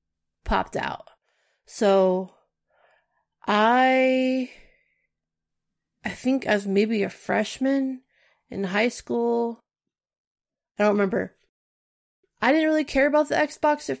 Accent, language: American, English